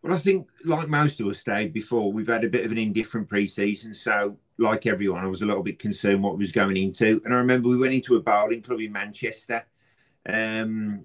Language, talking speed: English, 235 wpm